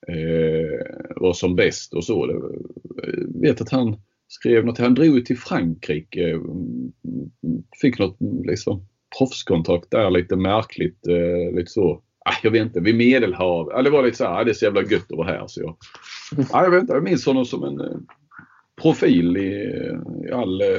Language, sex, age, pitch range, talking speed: Swedish, male, 30-49, 85-120 Hz, 160 wpm